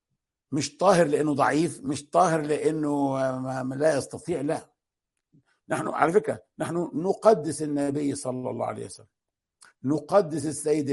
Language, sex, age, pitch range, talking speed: Arabic, male, 60-79, 125-155 Hz, 125 wpm